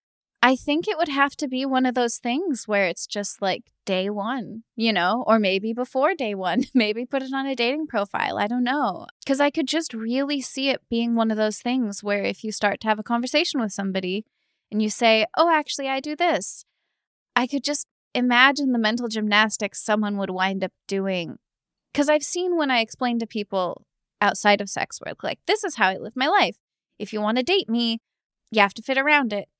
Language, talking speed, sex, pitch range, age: English, 220 wpm, female, 200-270 Hz, 20-39